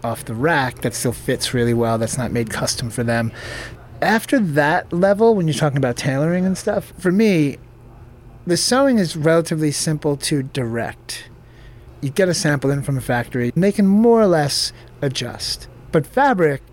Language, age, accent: English, 30-49, American